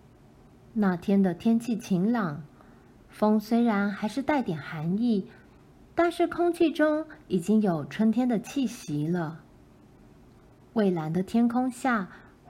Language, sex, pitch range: Chinese, female, 180-240 Hz